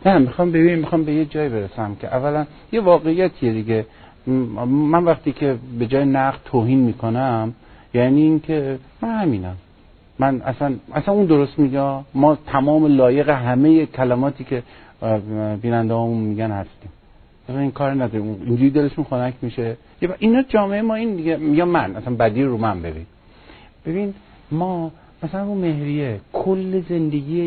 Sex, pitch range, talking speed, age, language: male, 115-155 Hz, 150 wpm, 50-69, Persian